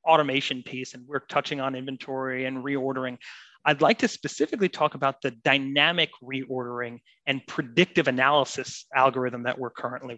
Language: English